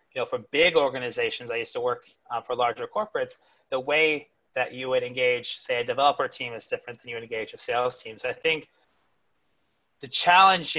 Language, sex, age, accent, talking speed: English, male, 30-49, American, 205 wpm